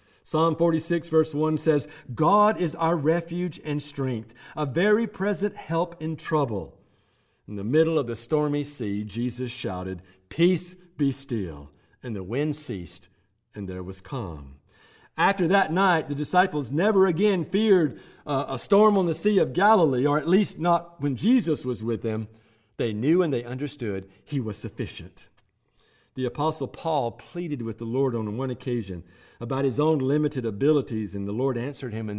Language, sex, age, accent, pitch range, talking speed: English, male, 50-69, American, 110-160 Hz, 170 wpm